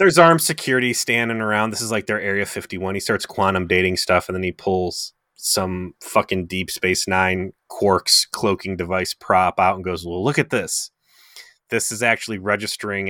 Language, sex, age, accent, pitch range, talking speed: English, male, 30-49, American, 95-120 Hz, 185 wpm